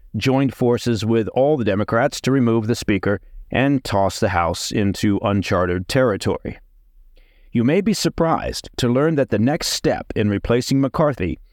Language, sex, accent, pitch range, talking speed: English, male, American, 100-130 Hz, 155 wpm